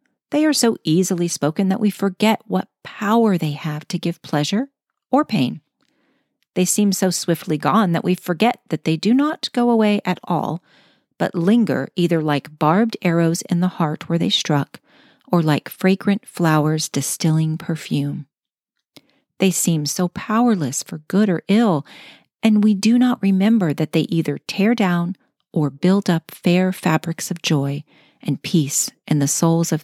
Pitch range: 155-210 Hz